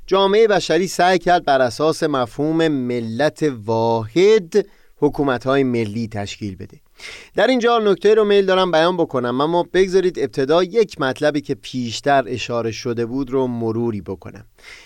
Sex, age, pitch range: male, 30-49, 115-155 Hz